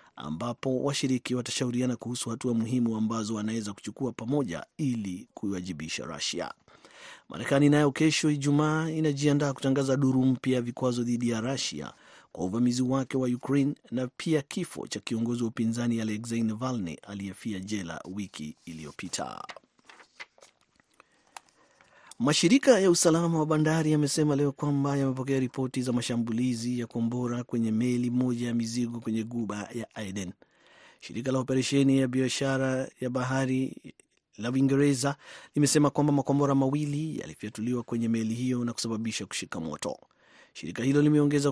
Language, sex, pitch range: Swahili, male, 110-140 Hz